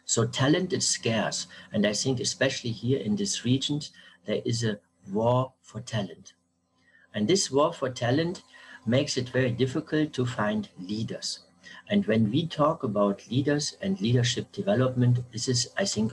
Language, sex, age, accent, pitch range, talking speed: German, male, 60-79, German, 105-145 Hz, 160 wpm